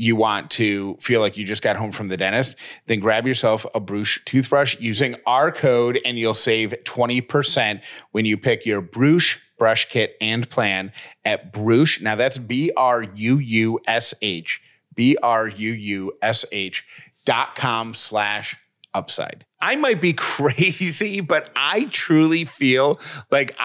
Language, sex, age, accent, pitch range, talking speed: English, male, 30-49, American, 115-145 Hz, 135 wpm